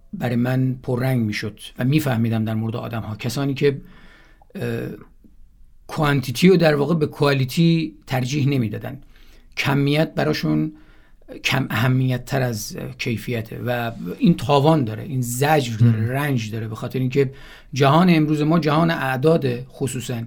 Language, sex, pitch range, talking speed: Persian, male, 120-150 Hz, 135 wpm